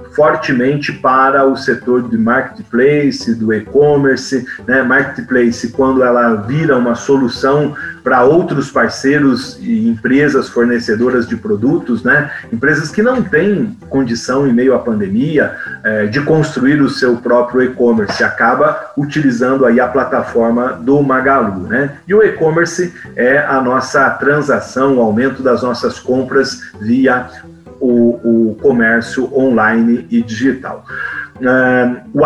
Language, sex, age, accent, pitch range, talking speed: Portuguese, male, 40-59, Brazilian, 120-150 Hz, 125 wpm